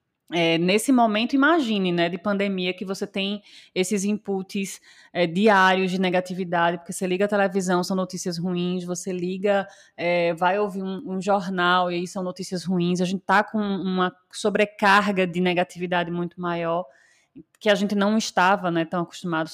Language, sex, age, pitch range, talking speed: Portuguese, female, 20-39, 180-220 Hz, 160 wpm